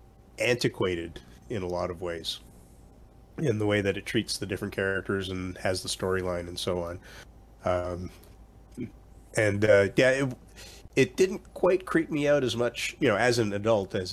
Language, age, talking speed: English, 30-49, 175 wpm